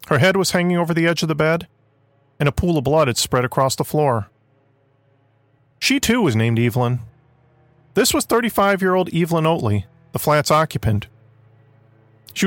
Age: 40-59